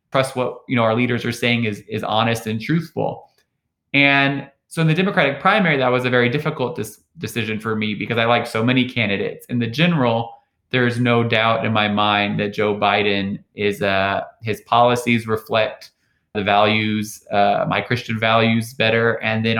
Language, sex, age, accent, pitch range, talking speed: English, male, 20-39, American, 105-120 Hz, 185 wpm